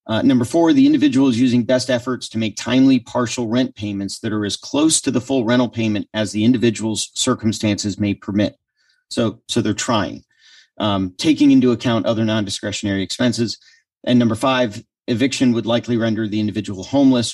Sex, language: male, English